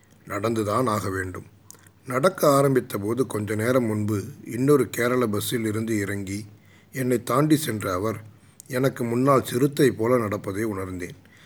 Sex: male